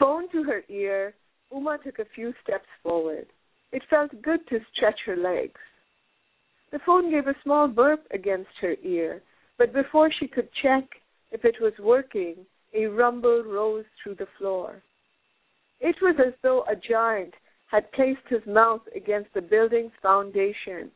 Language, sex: English, female